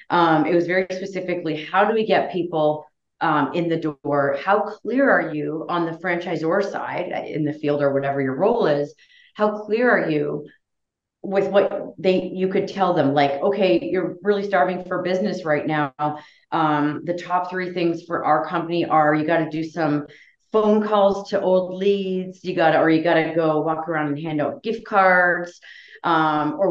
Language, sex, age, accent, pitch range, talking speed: English, female, 30-49, American, 150-190 Hz, 195 wpm